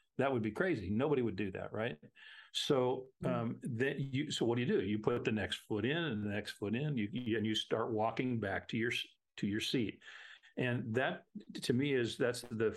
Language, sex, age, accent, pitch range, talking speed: English, male, 50-69, American, 115-140 Hz, 225 wpm